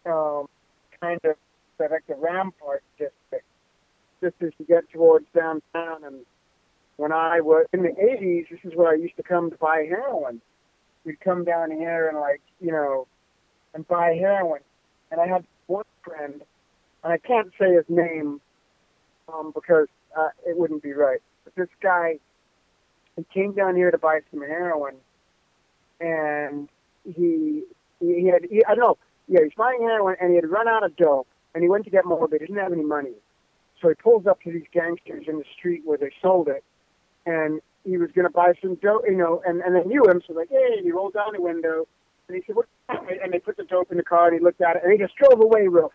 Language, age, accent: English, 40-59, American